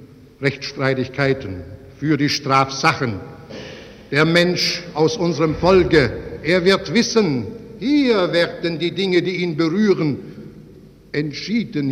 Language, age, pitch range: German, 60-79, 125-175 Hz